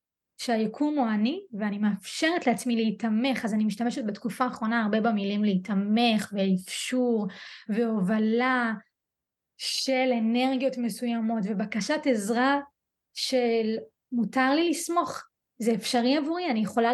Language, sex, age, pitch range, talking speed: Hebrew, female, 20-39, 220-275 Hz, 110 wpm